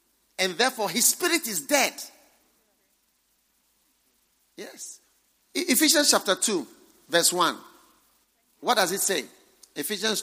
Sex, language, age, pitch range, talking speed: male, English, 50-69, 210-310 Hz, 105 wpm